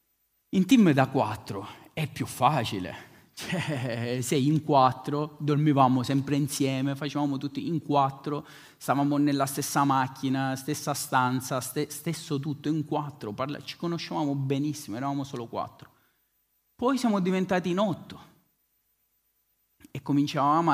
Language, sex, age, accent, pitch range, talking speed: Italian, male, 30-49, native, 125-150 Hz, 120 wpm